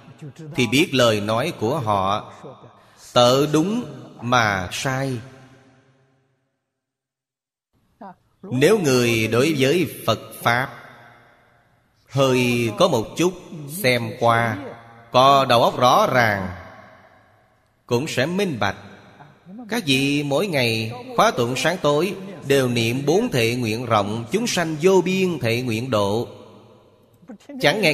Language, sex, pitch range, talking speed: Vietnamese, male, 115-145 Hz, 115 wpm